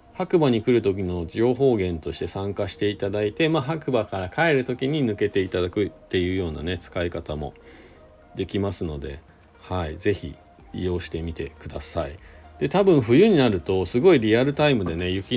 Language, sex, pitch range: Japanese, male, 85-110 Hz